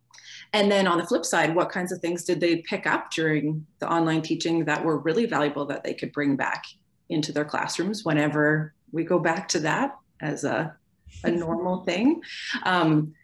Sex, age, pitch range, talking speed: female, 30-49, 150-180 Hz, 190 wpm